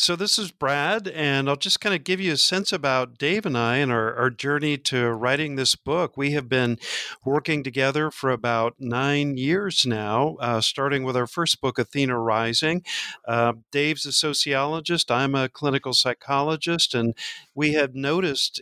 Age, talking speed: 50-69, 175 wpm